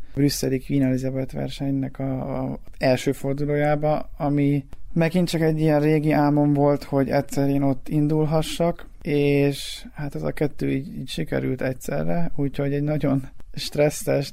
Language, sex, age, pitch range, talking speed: Hungarian, male, 20-39, 130-145 Hz, 140 wpm